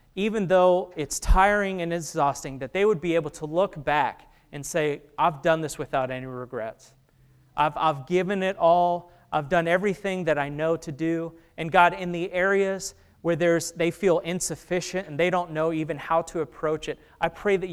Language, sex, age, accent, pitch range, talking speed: English, male, 30-49, American, 145-185 Hz, 195 wpm